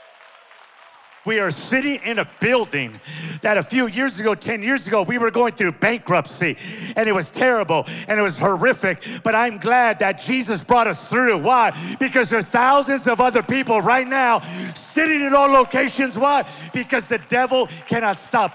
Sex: male